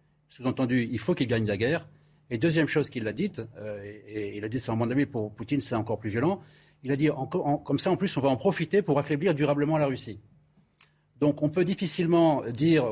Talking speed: 240 wpm